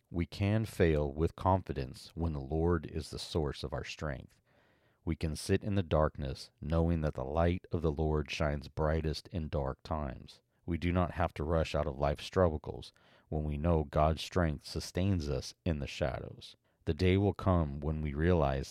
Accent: American